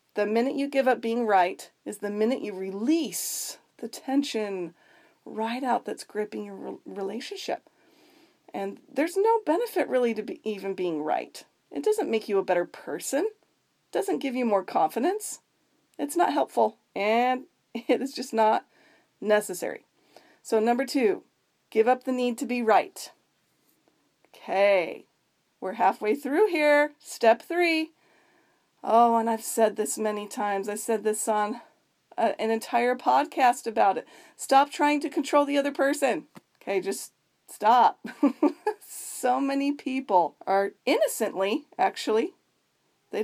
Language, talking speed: English, 140 wpm